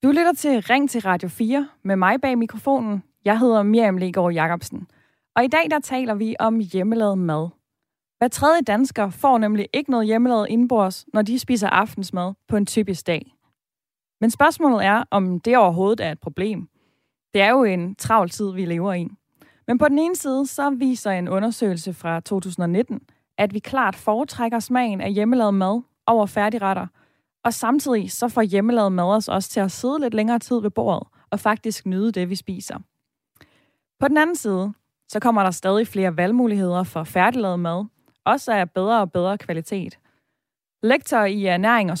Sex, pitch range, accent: female, 185-240 Hz, native